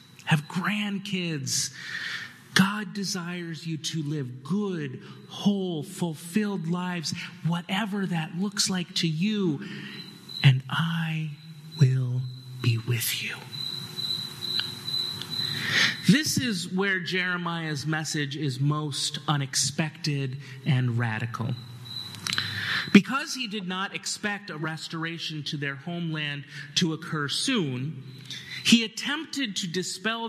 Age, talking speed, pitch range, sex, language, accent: 30-49, 100 wpm, 145-190 Hz, male, English, American